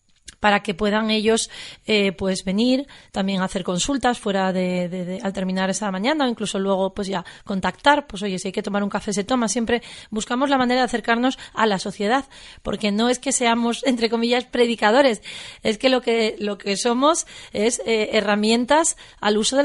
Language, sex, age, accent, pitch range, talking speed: Spanish, female, 30-49, Spanish, 200-245 Hz, 195 wpm